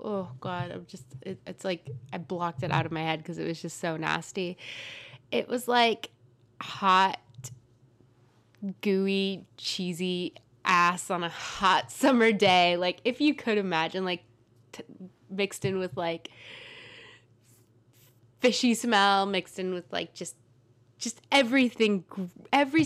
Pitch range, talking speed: 160-205 Hz, 135 wpm